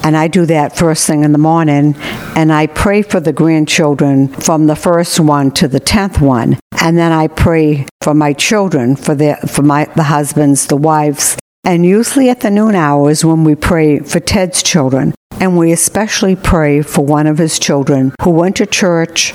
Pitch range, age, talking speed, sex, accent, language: 150-185 Hz, 60-79, 190 wpm, female, American, English